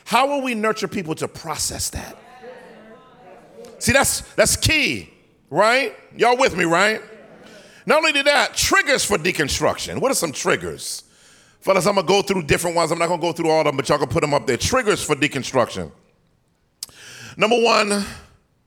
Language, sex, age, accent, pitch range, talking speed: English, male, 40-59, American, 180-255 Hz, 185 wpm